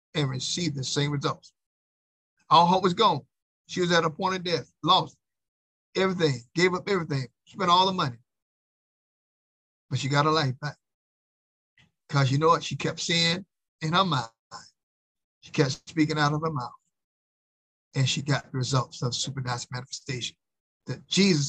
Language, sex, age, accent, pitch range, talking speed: English, male, 50-69, American, 130-160 Hz, 165 wpm